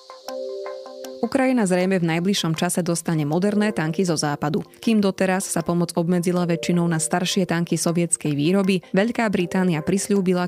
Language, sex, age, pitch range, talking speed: Slovak, female, 20-39, 165-195 Hz, 135 wpm